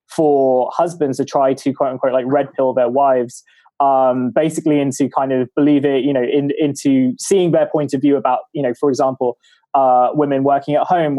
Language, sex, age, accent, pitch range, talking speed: English, male, 20-39, British, 130-150 Hz, 195 wpm